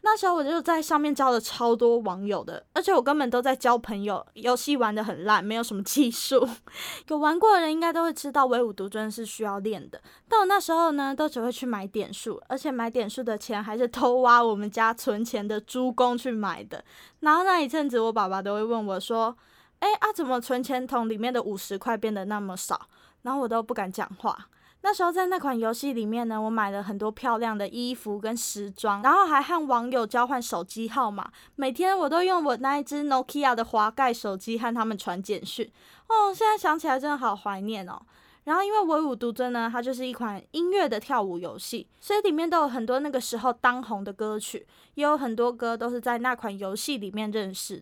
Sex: female